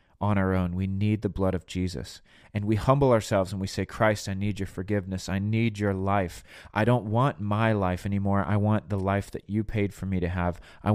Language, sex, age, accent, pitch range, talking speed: English, male, 30-49, American, 95-120 Hz, 235 wpm